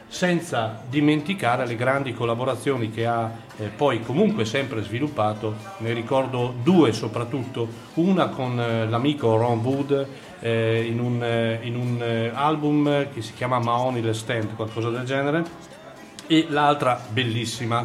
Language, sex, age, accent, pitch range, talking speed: Italian, male, 40-59, native, 110-135 Hz, 145 wpm